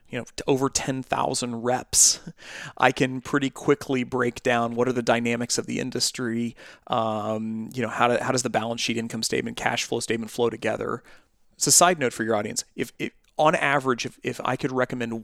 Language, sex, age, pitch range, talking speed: English, male, 30-49, 120-140 Hz, 195 wpm